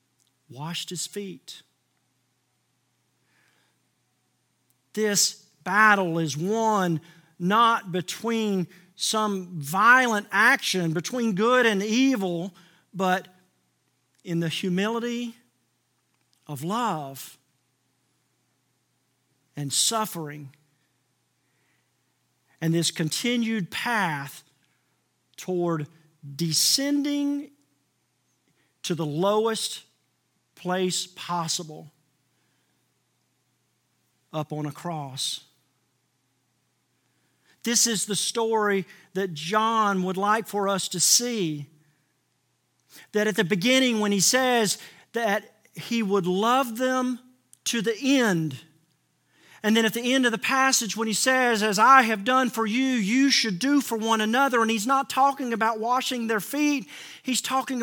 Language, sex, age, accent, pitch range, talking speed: English, male, 50-69, American, 140-230 Hz, 105 wpm